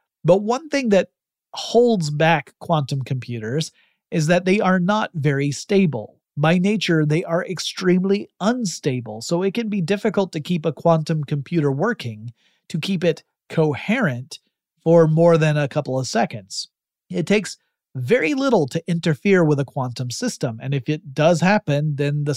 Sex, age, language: male, 30-49, English